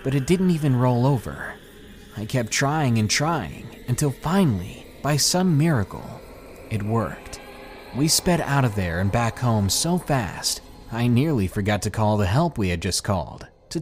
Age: 30-49